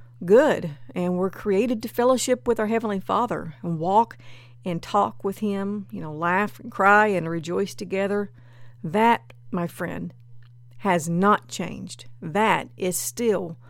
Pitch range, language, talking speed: 150-215 Hz, English, 145 wpm